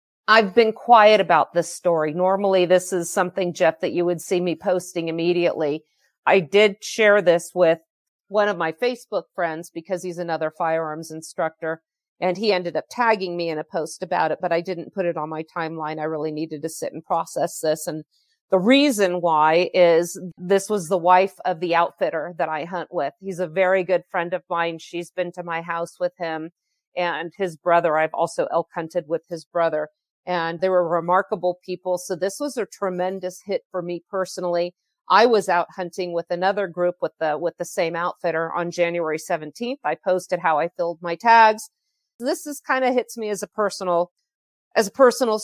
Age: 50-69